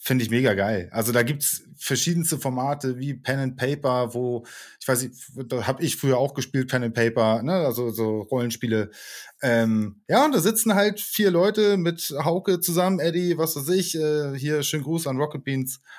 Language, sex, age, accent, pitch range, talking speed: German, male, 20-39, German, 120-155 Hz, 195 wpm